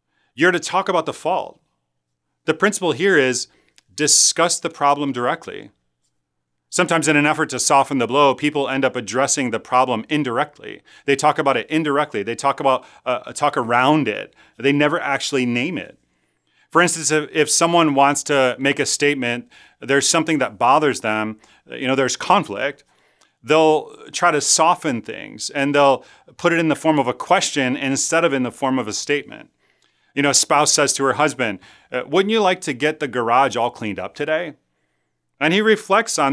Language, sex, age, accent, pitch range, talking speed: English, male, 30-49, American, 130-155 Hz, 180 wpm